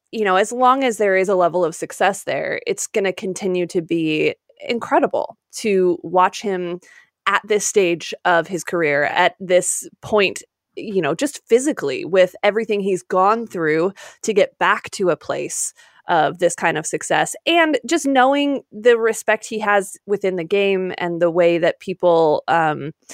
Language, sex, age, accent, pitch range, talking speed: English, female, 20-39, American, 175-235 Hz, 175 wpm